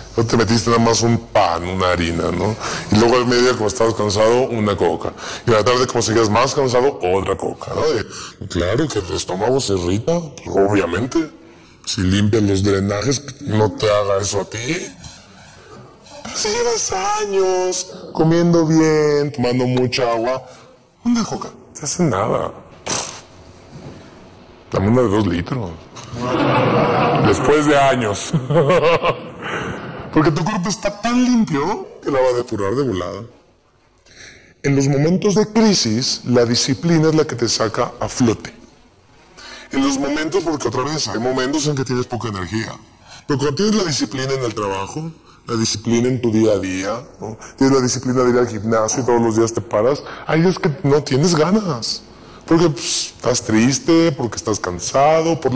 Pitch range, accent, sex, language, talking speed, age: 110-165 Hz, Mexican, female, Spanish, 165 wpm, 30-49